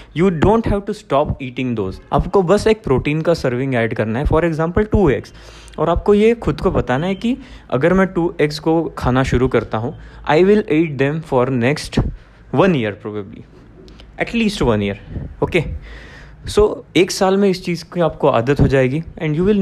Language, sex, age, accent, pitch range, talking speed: Hindi, male, 20-39, native, 130-185 Hz, 195 wpm